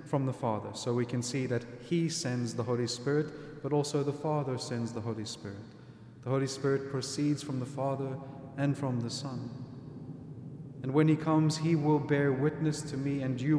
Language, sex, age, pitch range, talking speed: English, male, 30-49, 125-145 Hz, 195 wpm